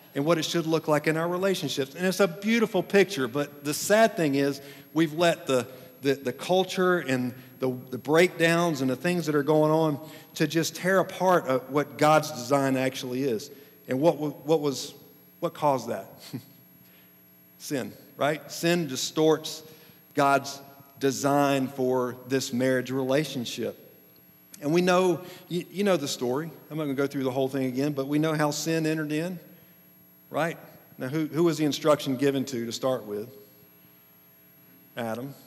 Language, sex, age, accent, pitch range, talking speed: English, male, 50-69, American, 120-155 Hz, 165 wpm